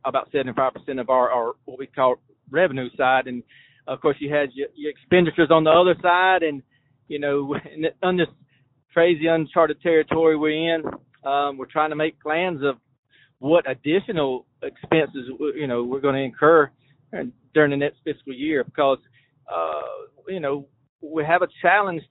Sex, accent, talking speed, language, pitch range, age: male, American, 170 wpm, English, 135-160 Hz, 40-59